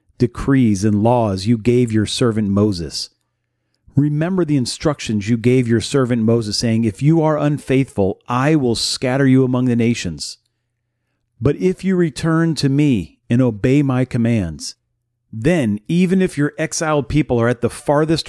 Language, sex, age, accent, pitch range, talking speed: English, male, 40-59, American, 115-145 Hz, 160 wpm